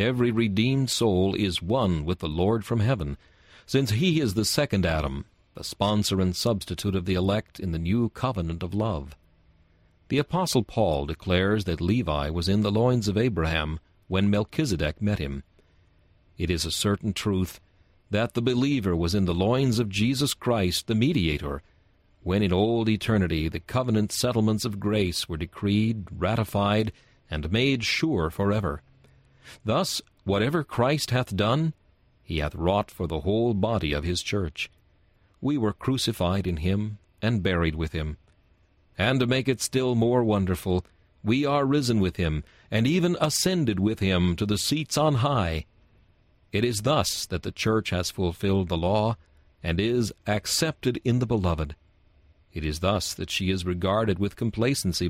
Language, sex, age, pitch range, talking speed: English, male, 40-59, 90-115 Hz, 160 wpm